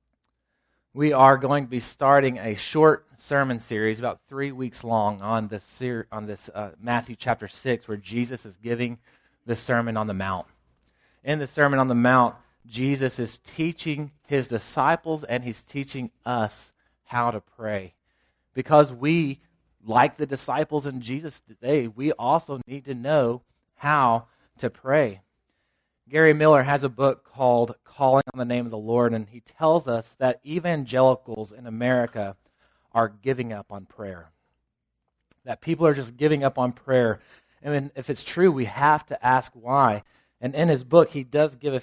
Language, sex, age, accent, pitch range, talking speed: English, male, 30-49, American, 115-140 Hz, 165 wpm